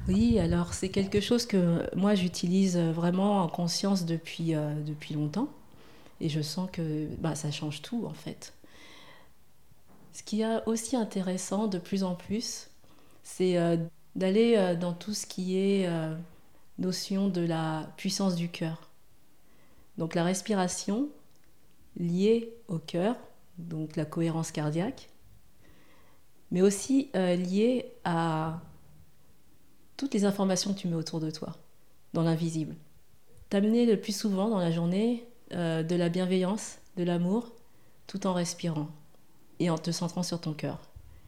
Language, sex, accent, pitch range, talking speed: French, female, French, 160-195 Hz, 140 wpm